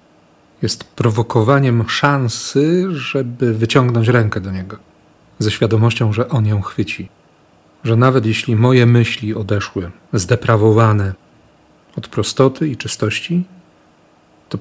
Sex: male